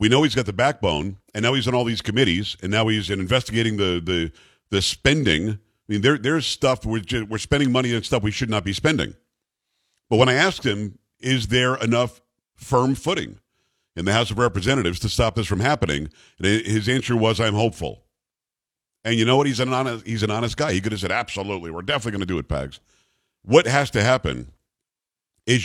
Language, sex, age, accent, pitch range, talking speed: English, male, 50-69, American, 105-130 Hz, 215 wpm